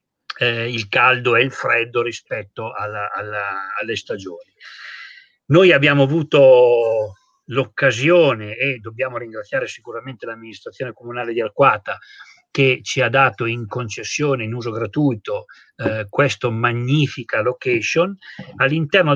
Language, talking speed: Italian, 110 wpm